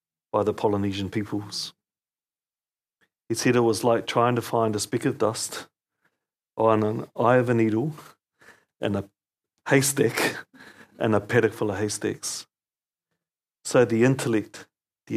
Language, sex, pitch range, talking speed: English, male, 105-120 Hz, 140 wpm